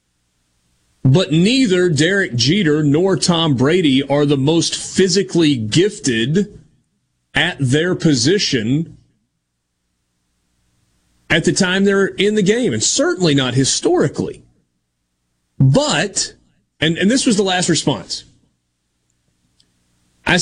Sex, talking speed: male, 105 wpm